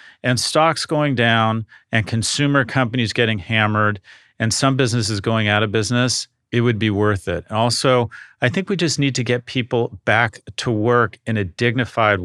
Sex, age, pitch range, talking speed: male, 40-59, 100-125 Hz, 180 wpm